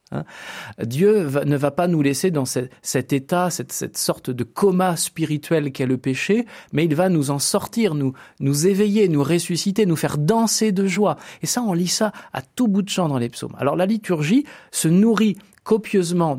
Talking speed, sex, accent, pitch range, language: 200 wpm, male, French, 130-200 Hz, French